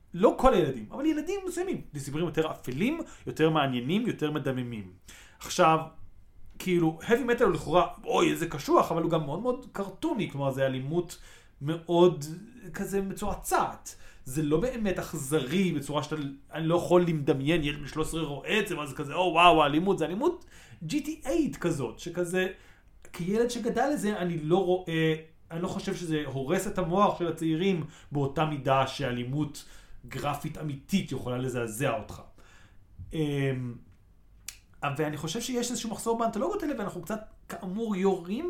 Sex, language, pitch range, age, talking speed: male, Hebrew, 145-210 Hz, 30-49, 145 wpm